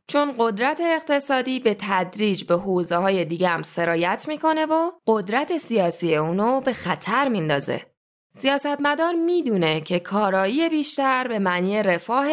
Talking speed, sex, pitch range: 130 wpm, female, 175-260 Hz